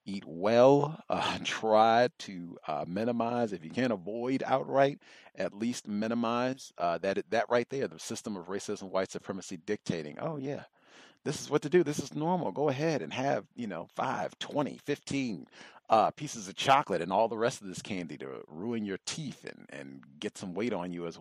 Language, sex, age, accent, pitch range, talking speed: English, male, 40-59, American, 100-130 Hz, 195 wpm